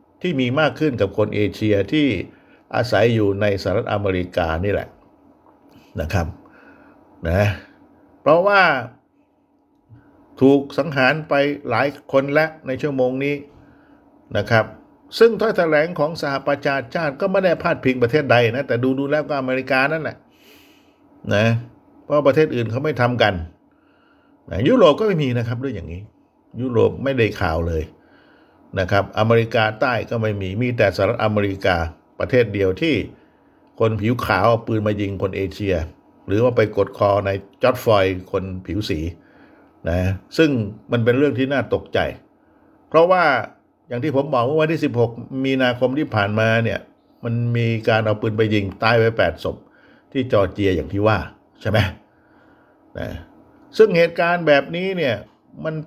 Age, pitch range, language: 60-79, 105-145 Hz, Thai